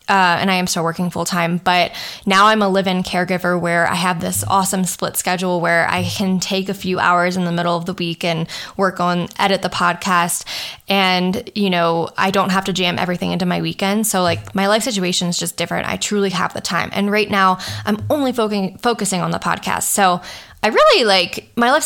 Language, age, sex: English, 10-29, female